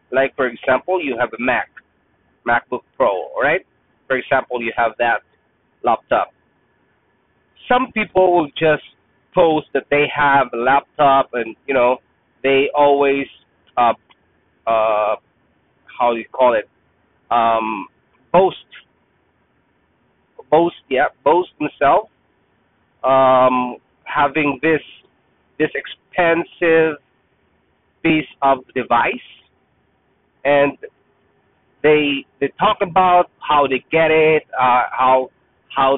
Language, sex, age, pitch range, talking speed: English, male, 30-49, 130-160 Hz, 105 wpm